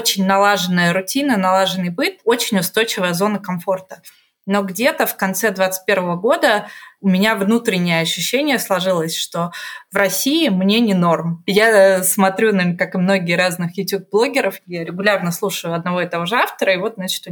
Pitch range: 185-225 Hz